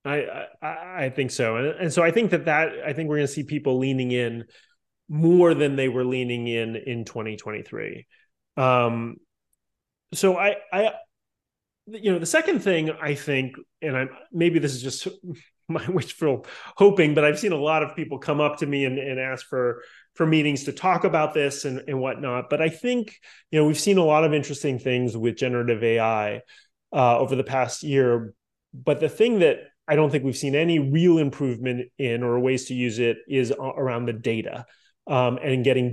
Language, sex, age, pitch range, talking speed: English, male, 30-49, 125-165 Hz, 195 wpm